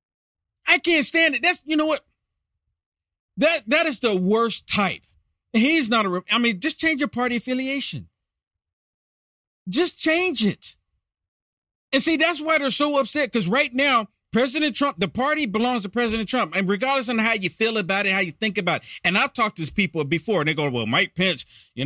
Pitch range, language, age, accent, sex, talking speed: 150-235 Hz, English, 50-69, American, male, 200 wpm